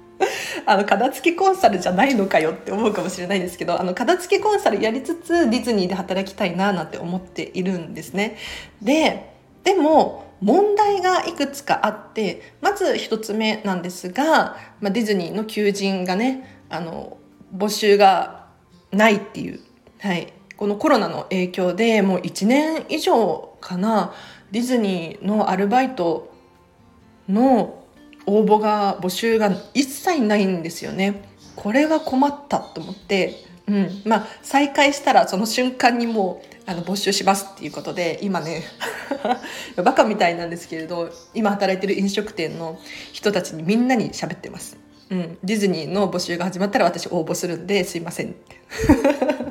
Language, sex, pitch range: Japanese, female, 185-260 Hz